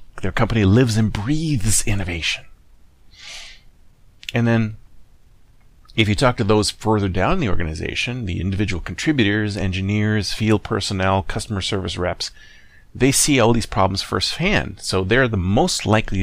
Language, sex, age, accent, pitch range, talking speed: English, male, 30-49, American, 95-120 Hz, 135 wpm